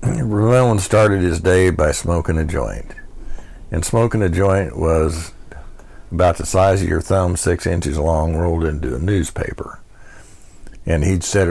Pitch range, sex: 80-100 Hz, male